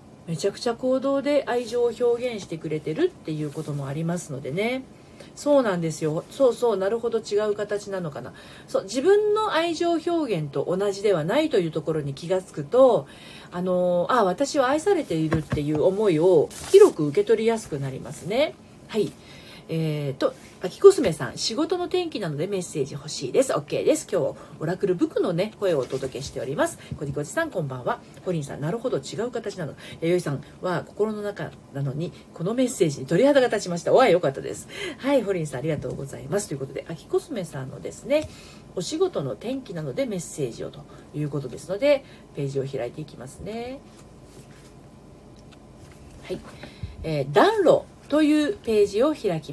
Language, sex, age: Japanese, female, 40-59